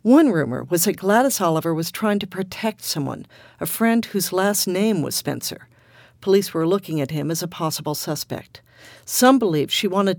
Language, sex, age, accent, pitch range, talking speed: English, female, 50-69, American, 155-205 Hz, 185 wpm